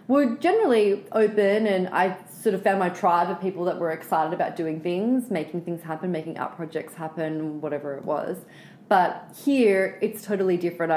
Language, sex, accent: English, female, Australian